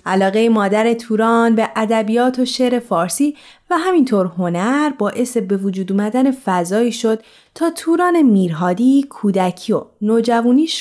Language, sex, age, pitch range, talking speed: Persian, female, 30-49, 185-255 Hz, 130 wpm